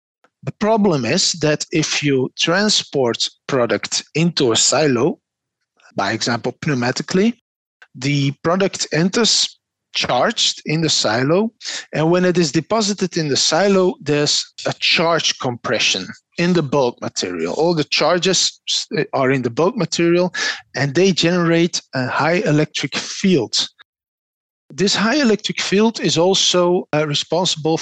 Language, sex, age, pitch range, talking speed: English, male, 50-69, 150-195 Hz, 125 wpm